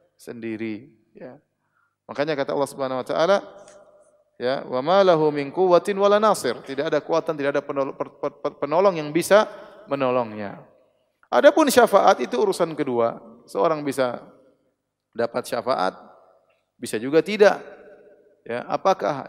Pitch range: 140-180 Hz